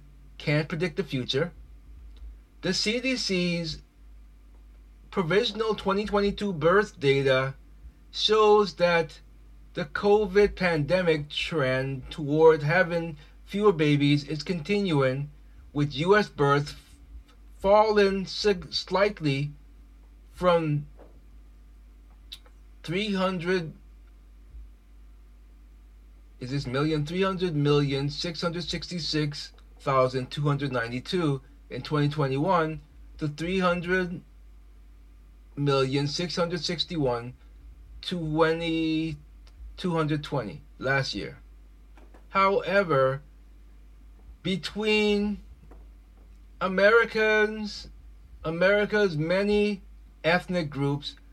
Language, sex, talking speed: English, male, 70 wpm